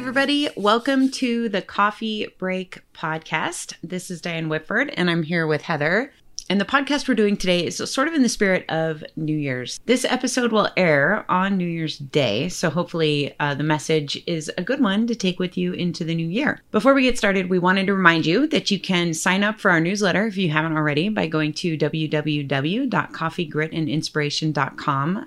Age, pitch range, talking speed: 30-49, 150-195 Hz, 190 wpm